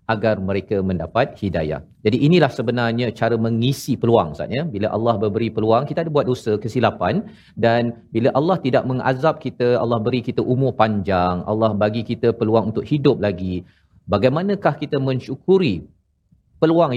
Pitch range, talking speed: 105-130 Hz, 150 wpm